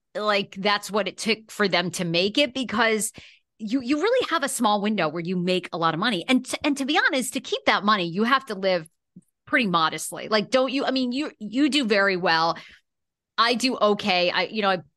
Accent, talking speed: American, 230 wpm